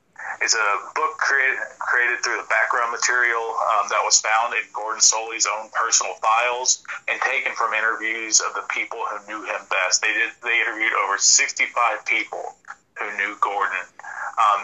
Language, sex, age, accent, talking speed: English, male, 30-49, American, 160 wpm